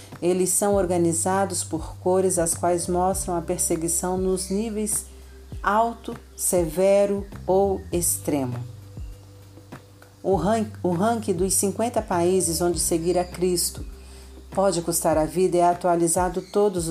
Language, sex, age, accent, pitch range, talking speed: Portuguese, female, 40-59, Brazilian, 160-195 Hz, 115 wpm